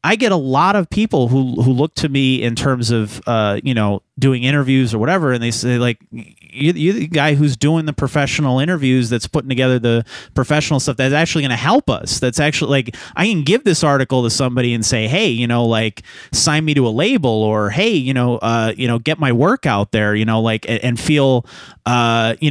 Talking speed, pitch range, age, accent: 225 wpm, 115-150 Hz, 30-49, American